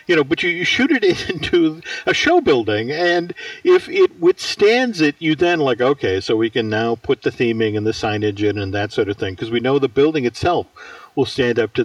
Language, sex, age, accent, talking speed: English, male, 50-69, American, 235 wpm